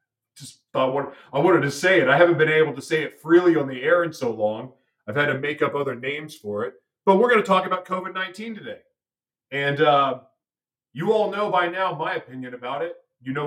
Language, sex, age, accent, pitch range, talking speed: English, male, 40-59, American, 130-175 Hz, 220 wpm